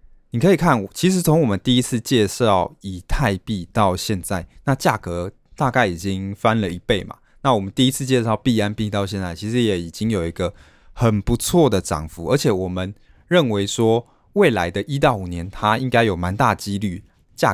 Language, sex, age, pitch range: Chinese, male, 20-39, 90-115 Hz